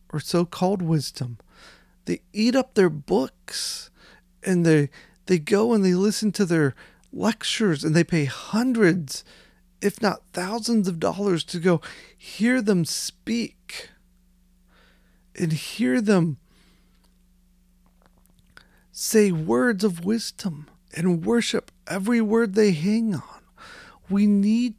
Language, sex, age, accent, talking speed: English, male, 40-59, American, 115 wpm